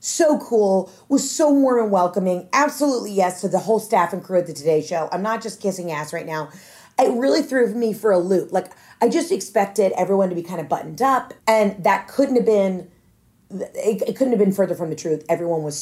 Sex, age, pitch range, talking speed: female, 30-49, 165-220 Hz, 230 wpm